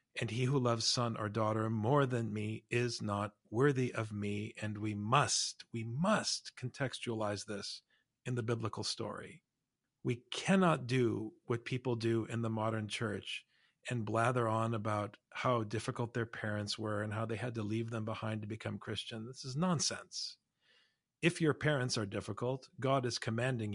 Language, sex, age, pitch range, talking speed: English, male, 40-59, 110-130 Hz, 170 wpm